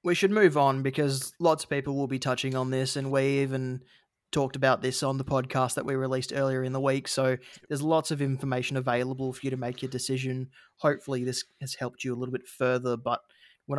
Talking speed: 225 wpm